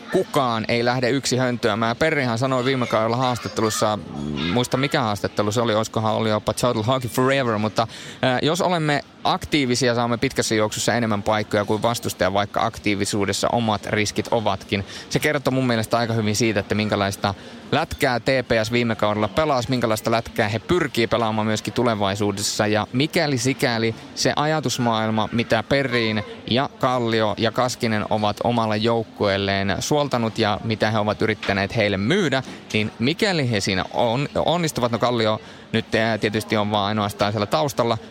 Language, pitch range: Finnish, 105-125 Hz